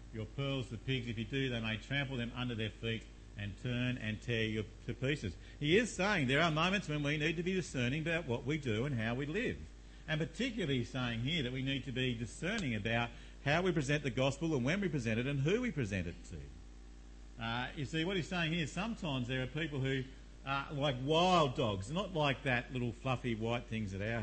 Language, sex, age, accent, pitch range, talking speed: English, male, 50-69, Australian, 105-155 Hz, 240 wpm